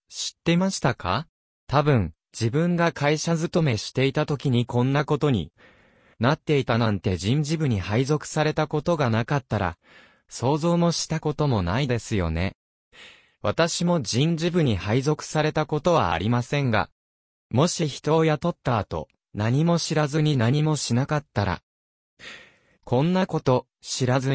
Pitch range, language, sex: 115-160 Hz, Japanese, male